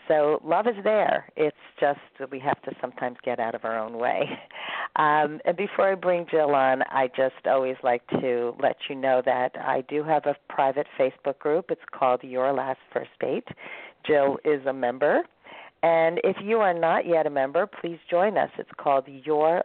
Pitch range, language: 130-170 Hz, English